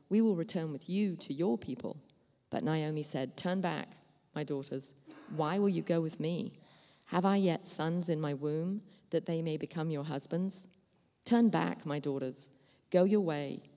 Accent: British